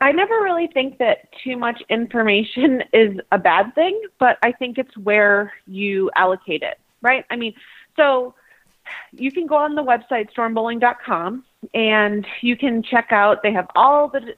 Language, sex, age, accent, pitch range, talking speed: English, female, 30-49, American, 200-265 Hz, 165 wpm